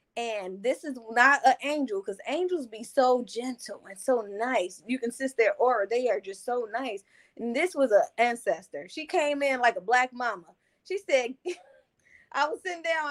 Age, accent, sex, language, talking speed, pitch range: 20-39, American, female, English, 190 wpm, 250-340 Hz